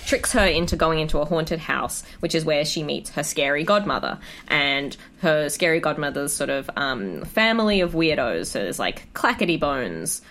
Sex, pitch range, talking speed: female, 145-200 Hz, 180 wpm